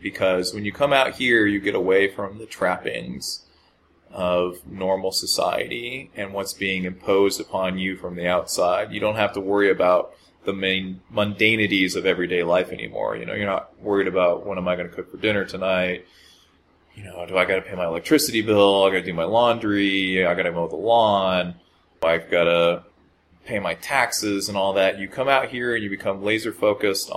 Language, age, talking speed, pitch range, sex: English, 20-39, 195 wpm, 90-100 Hz, male